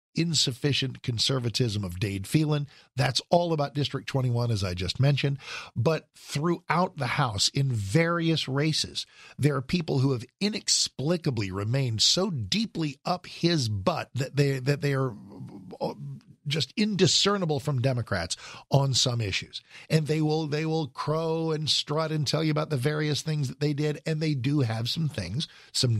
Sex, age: male, 50-69